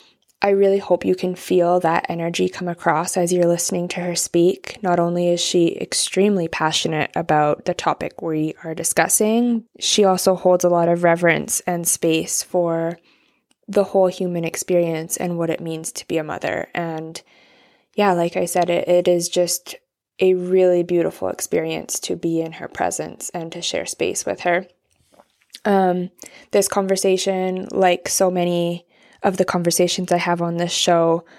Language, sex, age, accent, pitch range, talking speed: English, female, 20-39, American, 170-195 Hz, 170 wpm